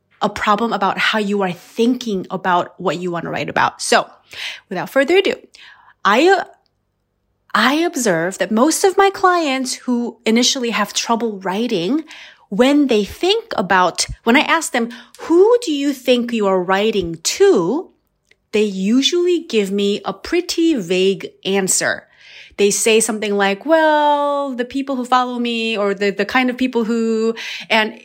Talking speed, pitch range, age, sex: 155 wpm, 205-275 Hz, 30-49, female